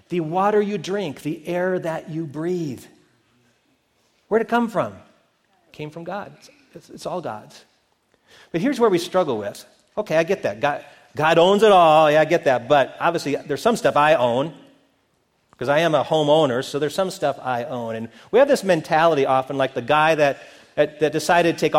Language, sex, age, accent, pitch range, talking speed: English, male, 40-59, American, 145-200 Hz, 200 wpm